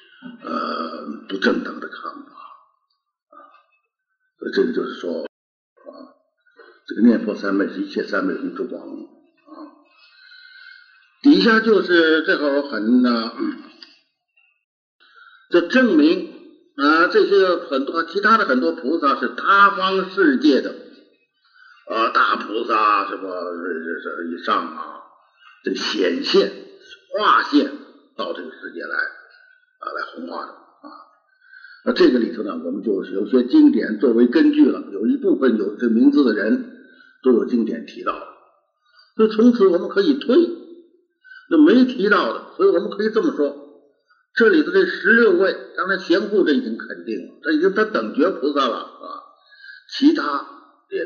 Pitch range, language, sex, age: 255-390 Hz, Chinese, male, 60-79